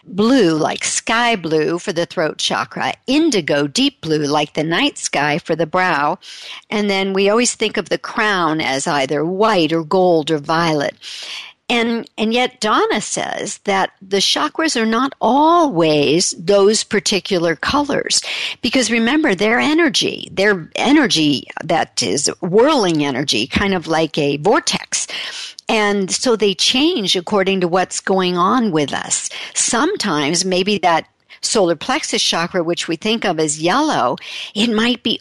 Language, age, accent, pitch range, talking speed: English, 60-79, American, 170-235 Hz, 150 wpm